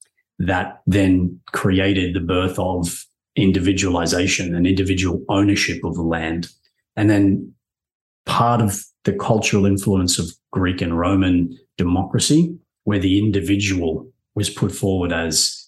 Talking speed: 125 wpm